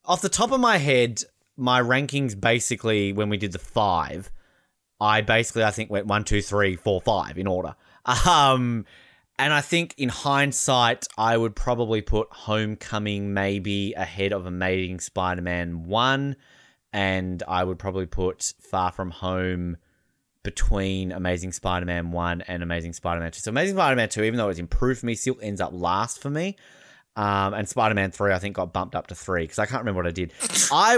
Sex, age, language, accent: male, 20-39, English, Australian